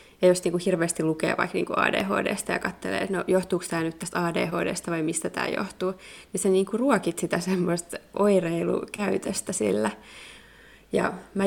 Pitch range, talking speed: 180-205 Hz, 175 wpm